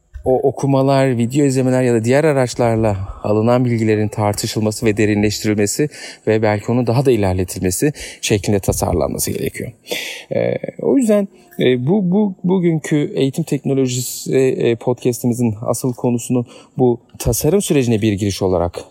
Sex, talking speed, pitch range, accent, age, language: male, 125 wpm, 105-145 Hz, native, 40-59, Turkish